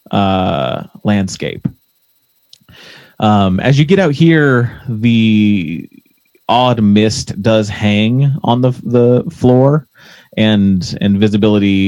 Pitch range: 100-125 Hz